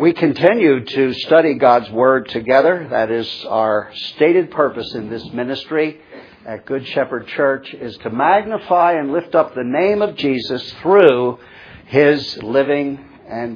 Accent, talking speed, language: American, 145 wpm, English